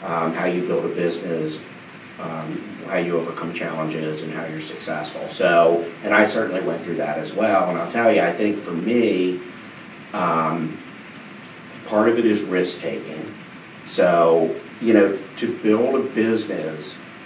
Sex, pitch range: male, 85-105 Hz